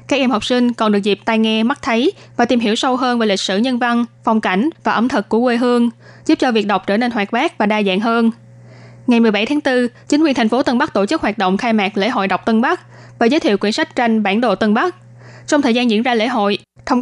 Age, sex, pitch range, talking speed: 20-39, female, 210-250 Hz, 280 wpm